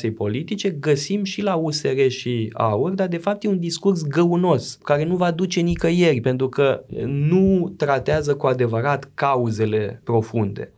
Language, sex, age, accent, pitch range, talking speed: Romanian, male, 20-39, native, 120-175 Hz, 150 wpm